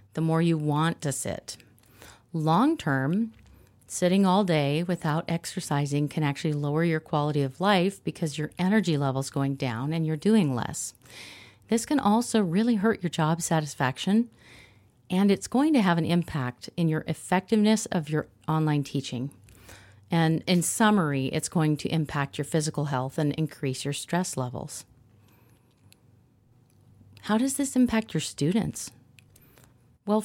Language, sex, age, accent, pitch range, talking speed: English, female, 40-59, American, 130-175 Hz, 145 wpm